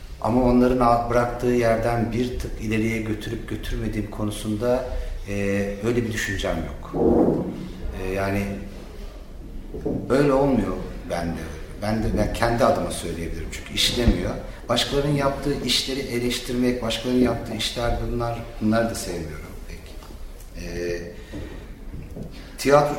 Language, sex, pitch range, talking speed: Turkish, male, 90-120 Hz, 115 wpm